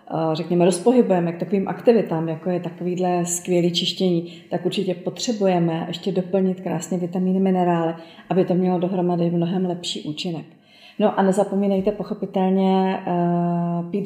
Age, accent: 30-49, native